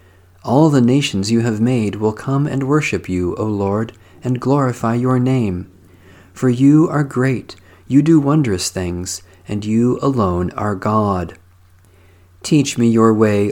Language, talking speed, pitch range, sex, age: English, 150 wpm, 95-130 Hz, male, 40-59